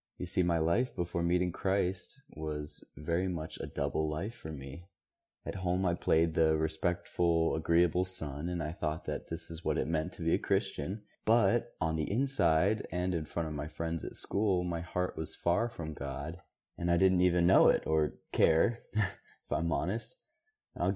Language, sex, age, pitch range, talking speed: English, male, 20-39, 80-95 Hz, 190 wpm